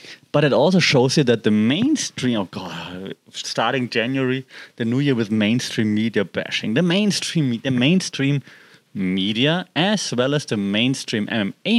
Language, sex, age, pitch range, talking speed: English, male, 30-49, 115-150 Hz, 145 wpm